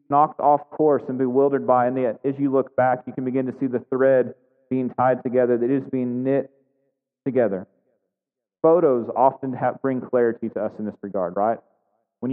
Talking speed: 185 wpm